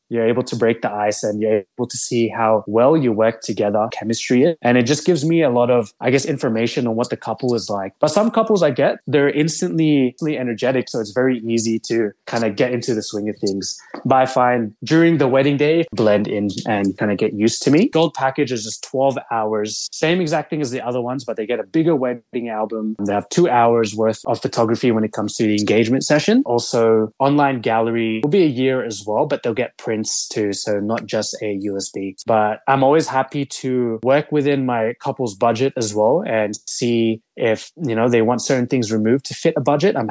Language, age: Filipino, 20-39